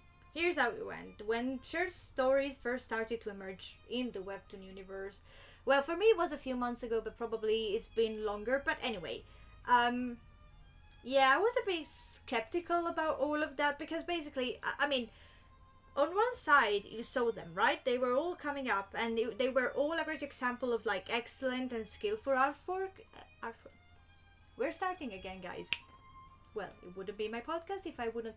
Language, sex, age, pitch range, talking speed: English, female, 20-39, 225-305 Hz, 185 wpm